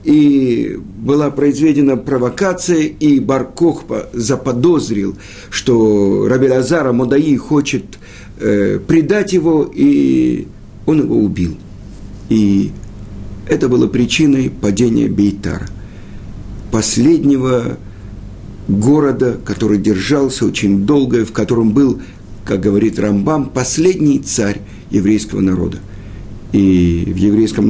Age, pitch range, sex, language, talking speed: 50-69, 100-135 Hz, male, Russian, 95 wpm